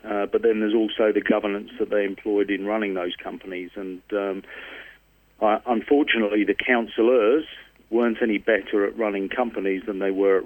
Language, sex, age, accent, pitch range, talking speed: English, male, 40-59, British, 95-110 Hz, 170 wpm